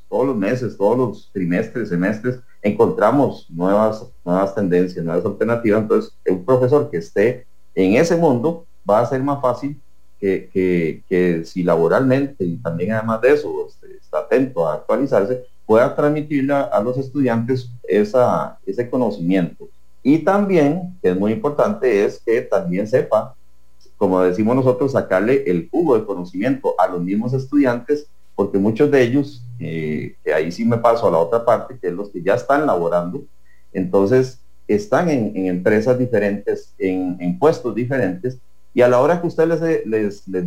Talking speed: 165 wpm